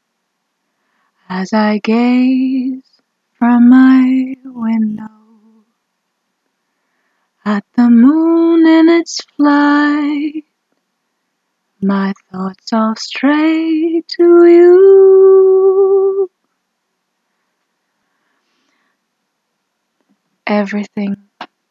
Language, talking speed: English, 55 wpm